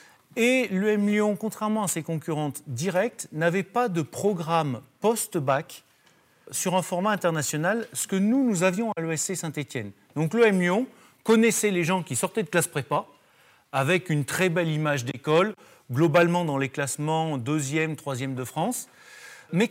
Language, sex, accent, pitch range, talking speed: French, male, French, 155-215 Hz, 160 wpm